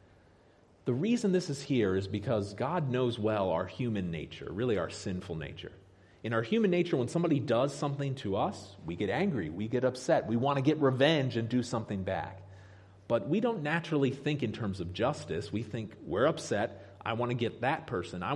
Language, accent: English, American